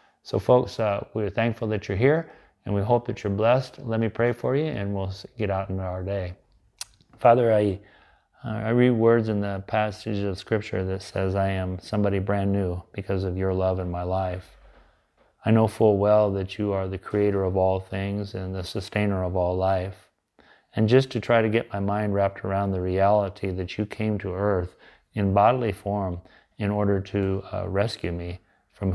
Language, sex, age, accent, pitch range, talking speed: English, male, 30-49, American, 95-105 Hz, 200 wpm